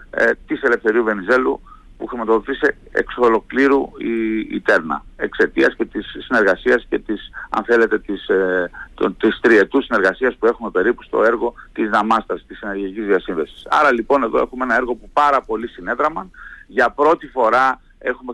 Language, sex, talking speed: Greek, male, 150 wpm